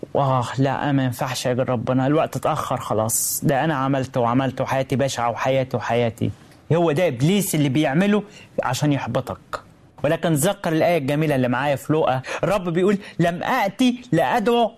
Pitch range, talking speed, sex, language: 130-205 Hz, 155 wpm, male, Arabic